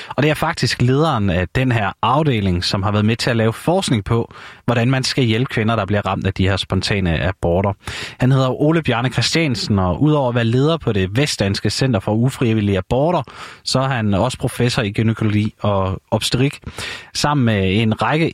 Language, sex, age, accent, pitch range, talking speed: Danish, male, 30-49, native, 100-130 Hz, 200 wpm